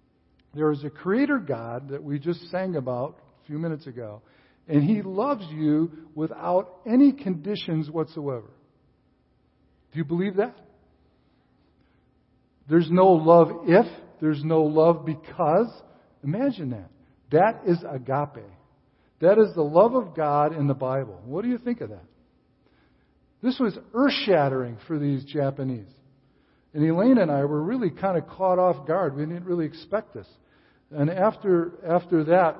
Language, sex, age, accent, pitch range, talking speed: English, male, 50-69, American, 135-175 Hz, 145 wpm